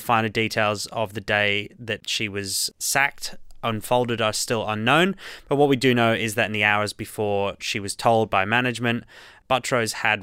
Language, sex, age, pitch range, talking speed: English, male, 20-39, 100-115 Hz, 190 wpm